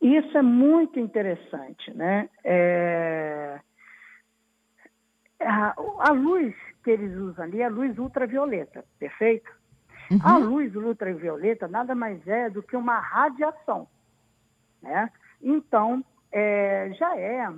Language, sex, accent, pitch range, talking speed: Portuguese, female, Brazilian, 180-245 Hz, 105 wpm